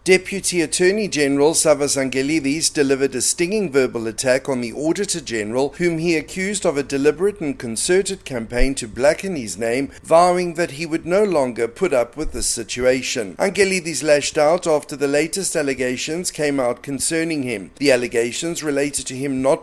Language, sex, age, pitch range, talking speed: English, male, 50-69, 135-180 Hz, 170 wpm